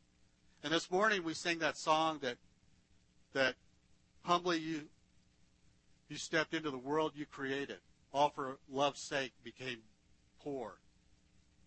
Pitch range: 125-175 Hz